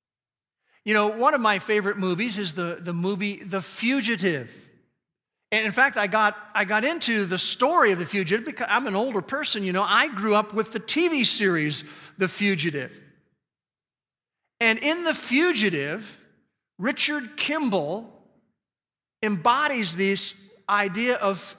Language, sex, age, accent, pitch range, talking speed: English, male, 50-69, American, 185-240 Hz, 140 wpm